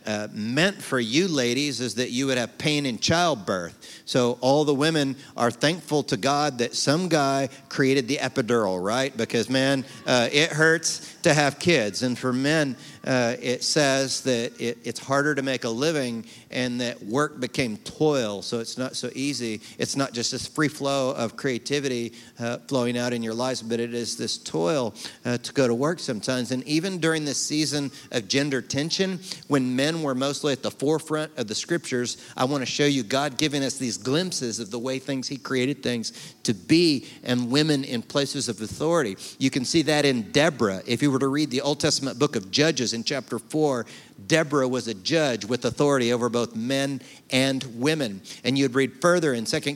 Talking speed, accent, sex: 200 wpm, American, male